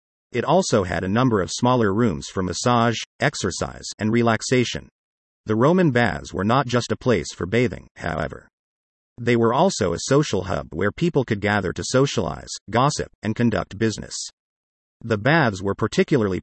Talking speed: 160 wpm